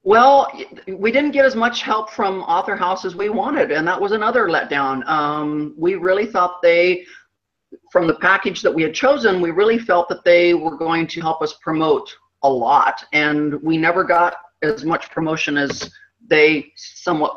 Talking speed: 185 wpm